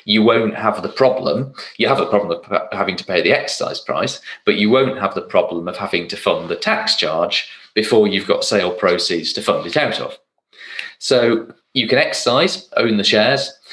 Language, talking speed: English, 200 wpm